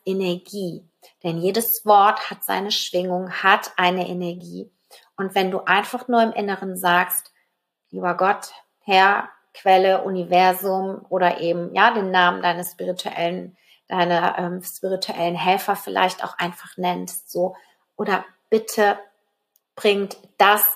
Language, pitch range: German, 180-210 Hz